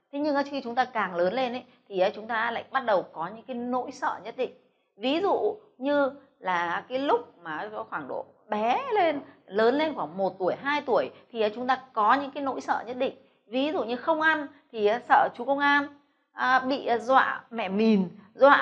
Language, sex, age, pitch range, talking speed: Vietnamese, female, 20-39, 210-275 Hz, 210 wpm